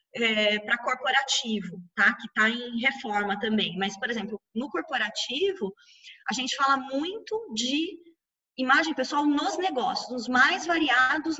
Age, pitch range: 20-39, 210-260 Hz